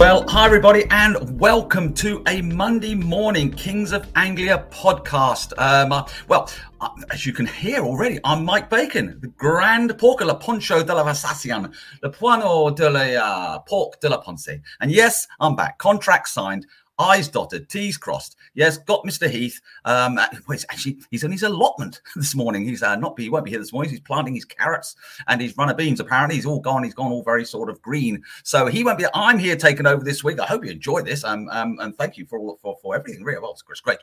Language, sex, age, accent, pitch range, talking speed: English, male, 40-59, British, 140-205 Hz, 210 wpm